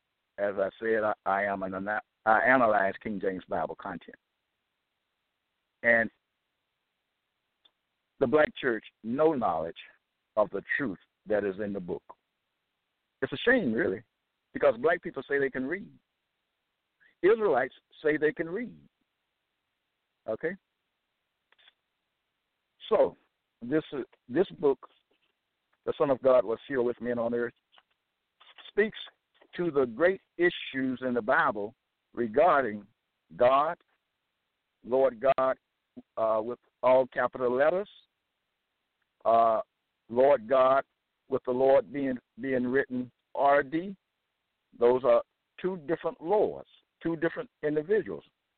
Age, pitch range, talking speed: 60-79, 115-165 Hz, 115 wpm